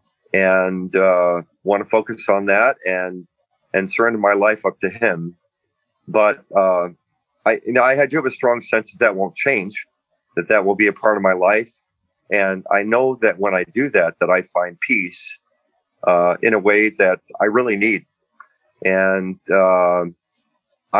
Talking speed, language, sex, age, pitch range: 175 wpm, English, male, 40-59, 90-110 Hz